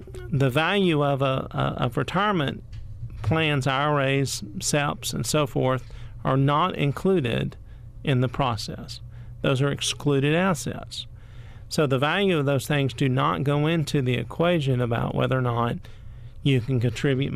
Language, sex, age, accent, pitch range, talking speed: English, male, 50-69, American, 115-150 Hz, 140 wpm